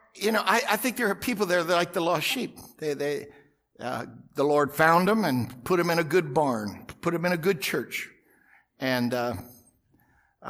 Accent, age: American, 60-79